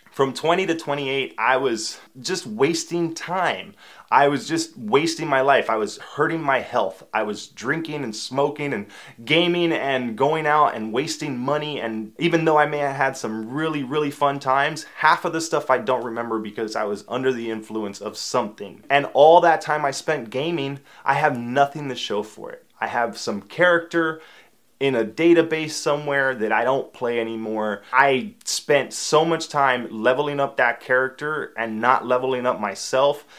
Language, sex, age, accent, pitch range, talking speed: English, male, 20-39, American, 115-150 Hz, 180 wpm